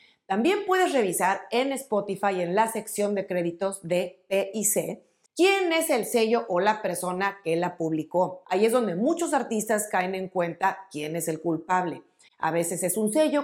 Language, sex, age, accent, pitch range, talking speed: Spanish, female, 40-59, Mexican, 175-230 Hz, 175 wpm